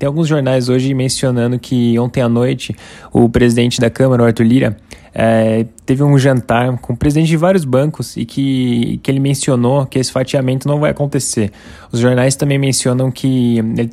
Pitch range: 120-135 Hz